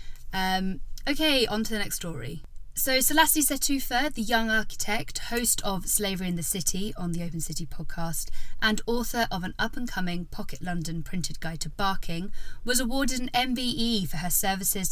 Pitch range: 165-210 Hz